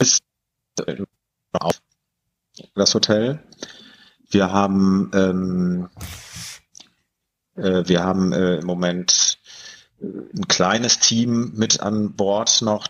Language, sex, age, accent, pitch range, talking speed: German, male, 30-49, German, 95-110 Hz, 70 wpm